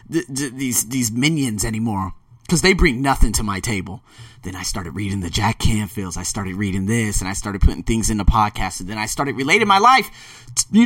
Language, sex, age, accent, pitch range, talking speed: English, male, 30-49, American, 110-145 Hz, 210 wpm